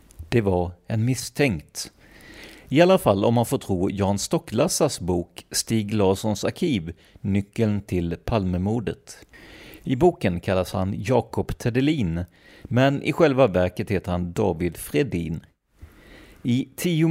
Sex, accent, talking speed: male, native, 125 wpm